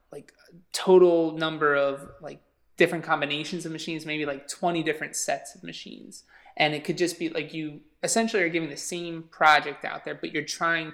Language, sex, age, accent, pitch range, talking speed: English, male, 20-39, American, 140-160 Hz, 185 wpm